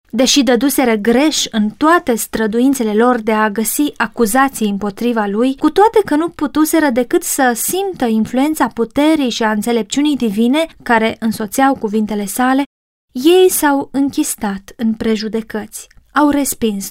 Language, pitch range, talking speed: Romanian, 220-265 Hz, 135 wpm